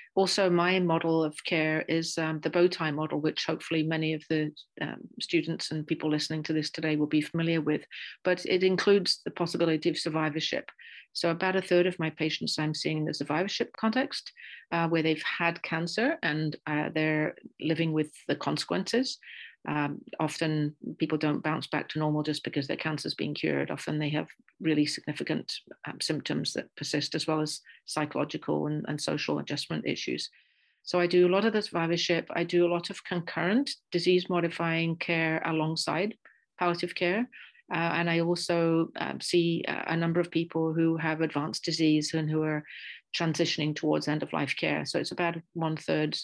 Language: English